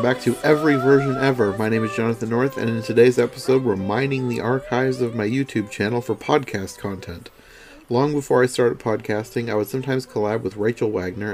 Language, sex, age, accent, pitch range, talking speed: English, male, 40-59, American, 100-120 Hz, 195 wpm